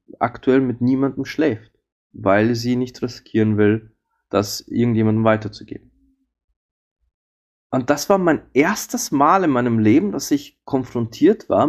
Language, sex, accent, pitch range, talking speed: German, male, German, 105-130 Hz, 130 wpm